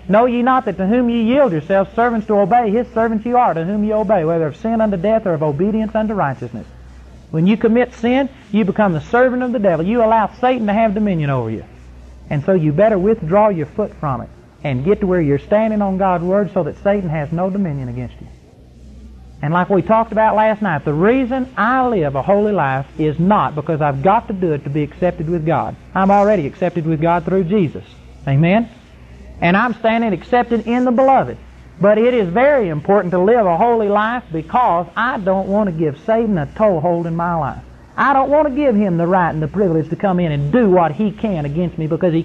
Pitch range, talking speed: 160-225 Hz, 230 wpm